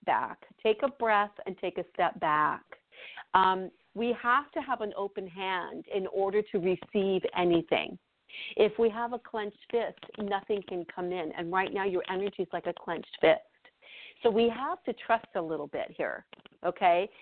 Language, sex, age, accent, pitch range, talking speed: English, female, 50-69, American, 175-205 Hz, 180 wpm